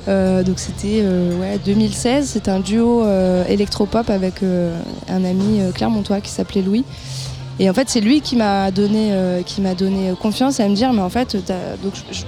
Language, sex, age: French, female, 20-39